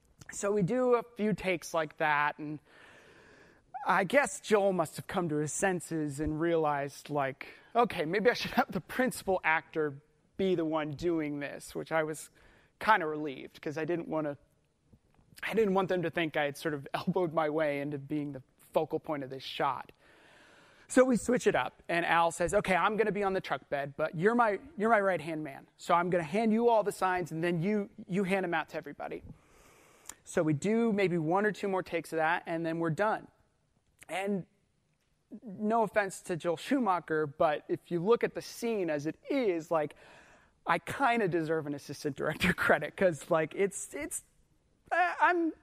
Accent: American